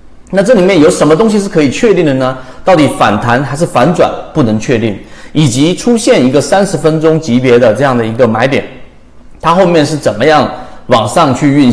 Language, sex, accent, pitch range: Chinese, male, native, 125-185 Hz